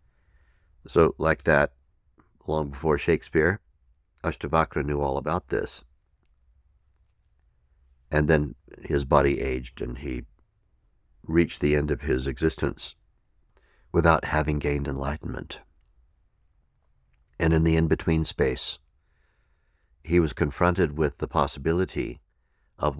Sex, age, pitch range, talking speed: male, 60-79, 70-80 Hz, 105 wpm